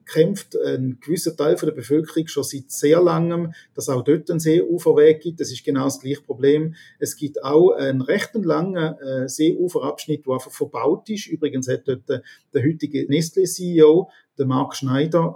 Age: 40-59